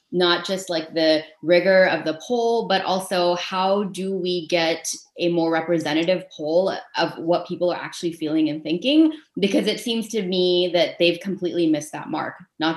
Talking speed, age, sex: 180 wpm, 20-39, female